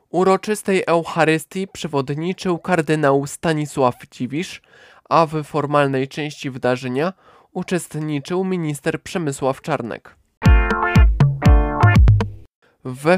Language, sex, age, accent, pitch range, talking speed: Polish, male, 20-39, native, 140-170 Hz, 75 wpm